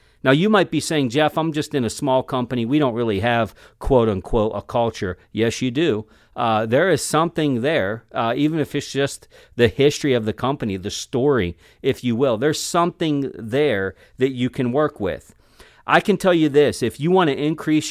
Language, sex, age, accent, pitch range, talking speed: English, male, 40-59, American, 115-155 Hz, 205 wpm